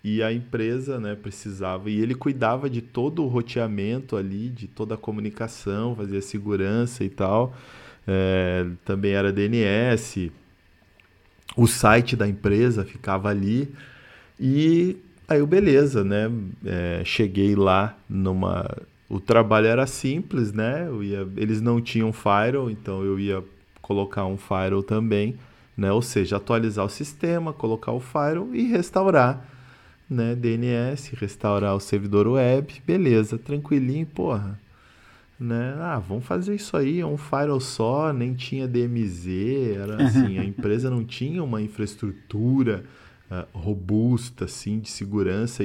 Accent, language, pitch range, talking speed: Brazilian, Portuguese, 100-125 Hz, 135 wpm